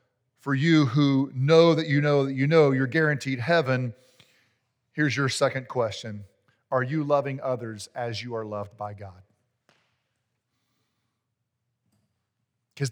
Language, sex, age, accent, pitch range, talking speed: English, male, 40-59, American, 120-150 Hz, 130 wpm